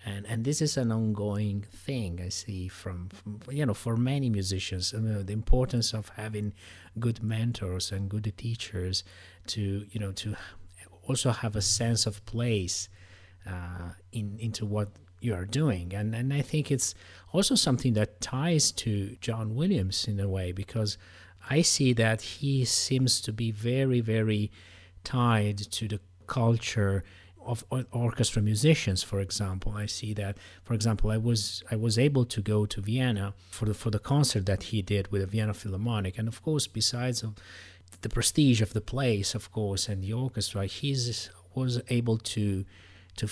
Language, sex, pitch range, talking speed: English, male, 100-120 Hz, 170 wpm